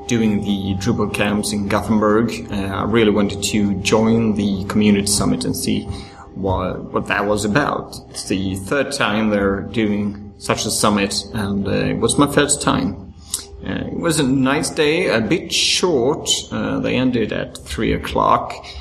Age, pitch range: 30-49, 100-125 Hz